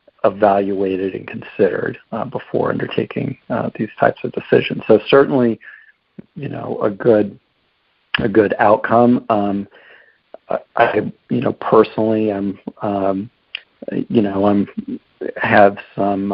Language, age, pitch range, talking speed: English, 50-69, 100-110 Hz, 120 wpm